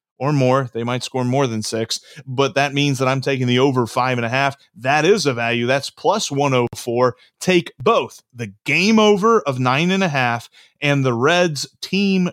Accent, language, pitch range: American, English, 125-160 Hz